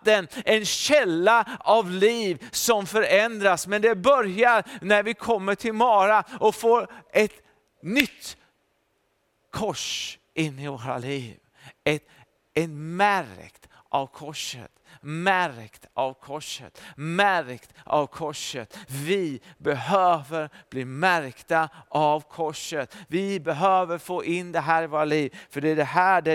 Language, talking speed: Swedish, 120 wpm